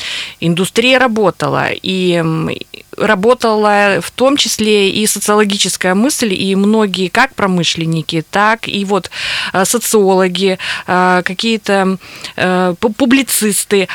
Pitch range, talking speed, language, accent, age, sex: 170-230 Hz, 85 wpm, Russian, native, 20-39, female